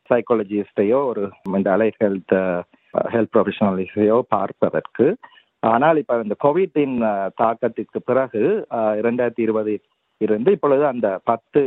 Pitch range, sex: 110-135 Hz, male